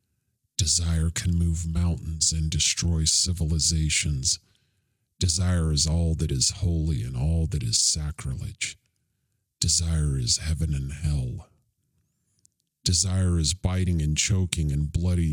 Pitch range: 80-95 Hz